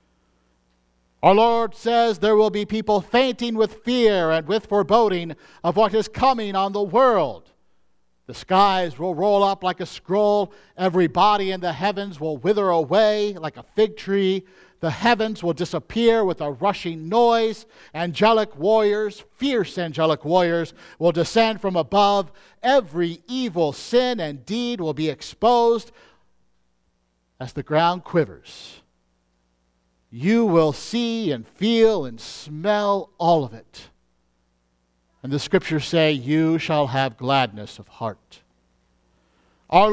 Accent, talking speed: American, 135 wpm